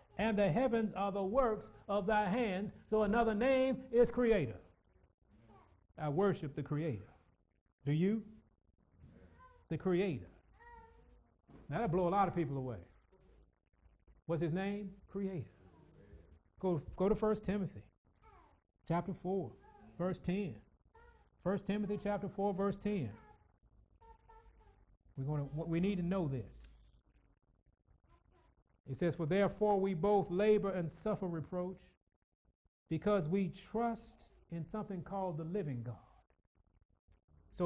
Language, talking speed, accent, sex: English, 120 wpm, American, male